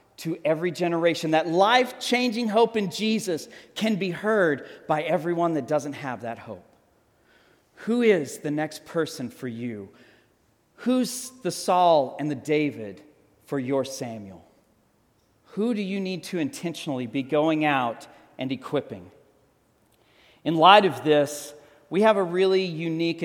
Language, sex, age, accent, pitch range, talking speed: English, male, 40-59, American, 145-195 Hz, 140 wpm